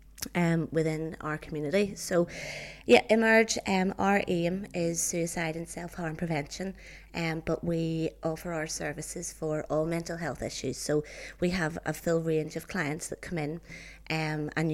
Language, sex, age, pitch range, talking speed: English, female, 30-49, 155-175 Hz, 165 wpm